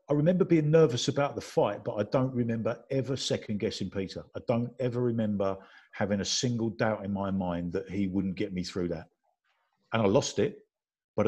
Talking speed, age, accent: 195 wpm, 50-69, British